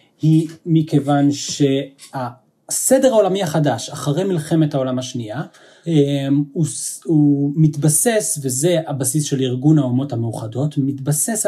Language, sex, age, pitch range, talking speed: Hebrew, male, 30-49, 135-160 Hz, 100 wpm